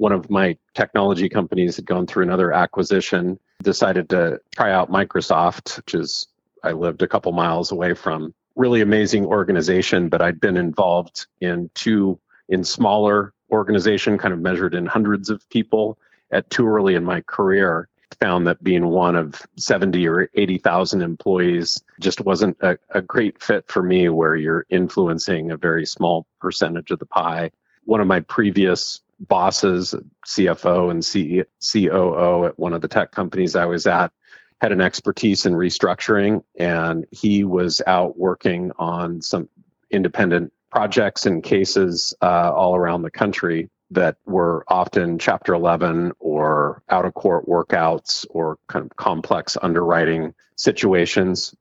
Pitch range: 85-95 Hz